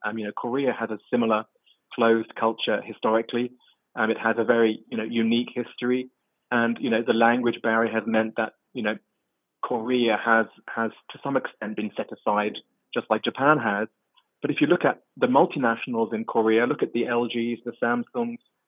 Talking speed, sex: 185 wpm, male